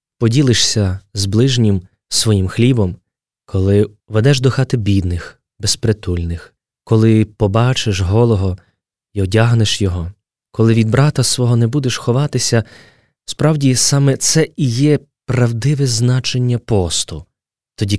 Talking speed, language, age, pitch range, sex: 110 wpm, Ukrainian, 20-39, 100-125 Hz, male